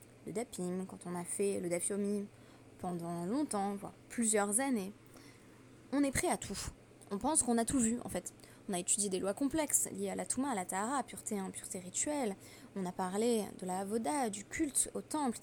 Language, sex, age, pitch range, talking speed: French, female, 20-39, 190-245 Hz, 215 wpm